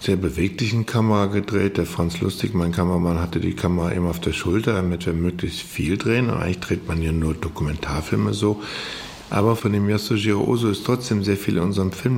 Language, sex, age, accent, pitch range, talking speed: German, male, 50-69, German, 90-105 Hz, 200 wpm